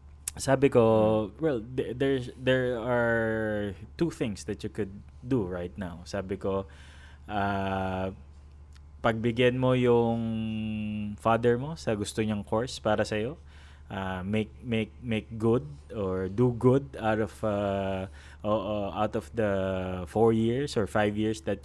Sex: male